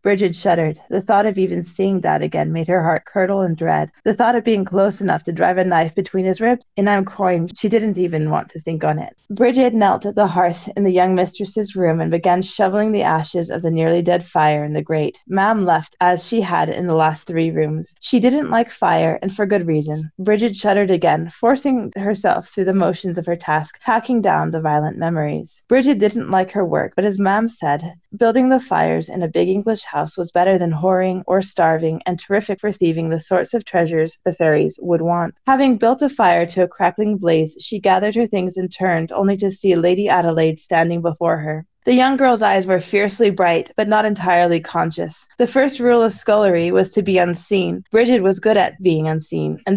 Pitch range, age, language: 170-210 Hz, 20-39, English